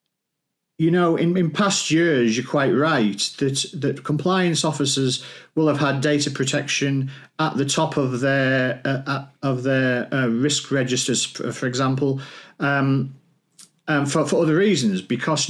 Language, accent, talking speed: English, British, 150 wpm